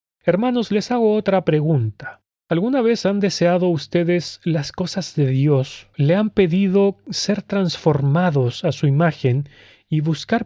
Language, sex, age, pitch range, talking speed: Spanish, male, 40-59, 135-180 Hz, 140 wpm